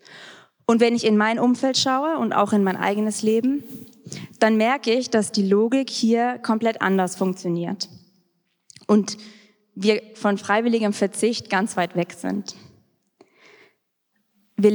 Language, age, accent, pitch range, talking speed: German, 20-39, German, 195-240 Hz, 135 wpm